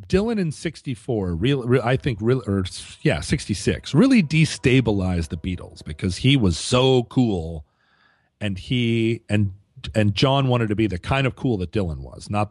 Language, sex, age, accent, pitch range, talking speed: English, male, 40-59, American, 100-140 Hz, 175 wpm